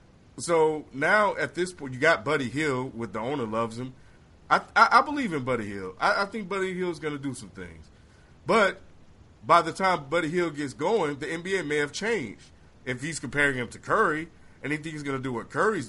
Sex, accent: male, American